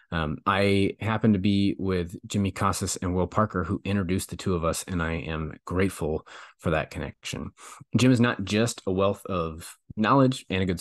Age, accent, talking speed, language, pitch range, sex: 30-49, American, 195 wpm, English, 85-105 Hz, male